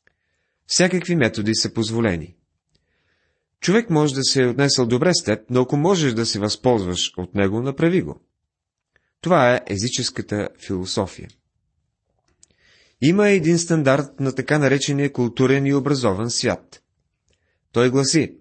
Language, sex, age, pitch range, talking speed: Bulgarian, male, 30-49, 110-145 Hz, 125 wpm